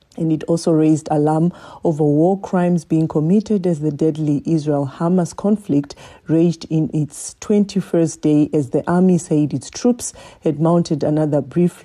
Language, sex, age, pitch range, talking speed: English, female, 40-59, 150-175 Hz, 155 wpm